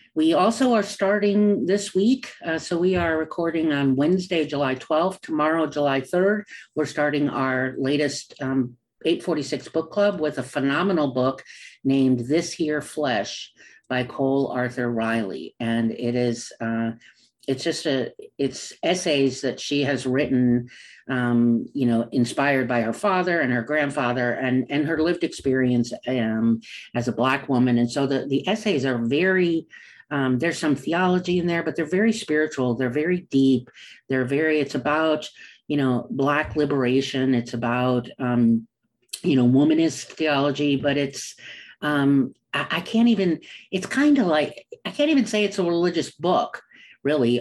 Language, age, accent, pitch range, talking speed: English, 50-69, American, 130-170 Hz, 155 wpm